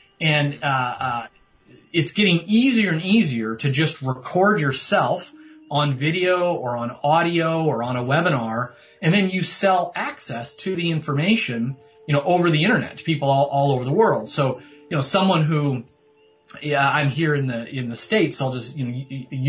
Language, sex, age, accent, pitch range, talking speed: English, male, 30-49, American, 130-175 Hz, 180 wpm